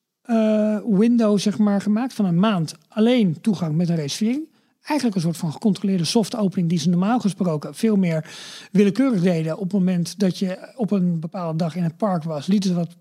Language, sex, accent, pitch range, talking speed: Dutch, male, Dutch, 170-215 Hz, 205 wpm